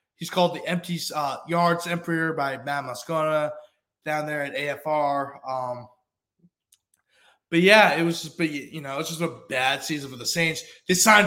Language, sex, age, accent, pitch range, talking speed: English, male, 20-39, American, 145-185 Hz, 175 wpm